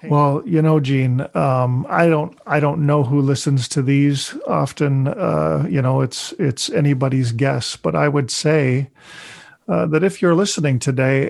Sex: male